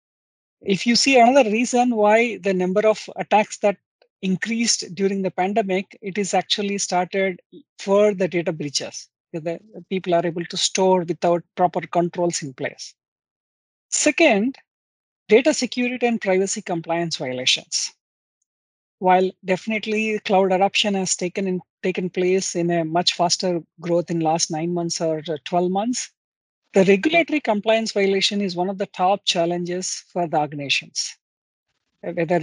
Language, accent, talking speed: English, Indian, 140 wpm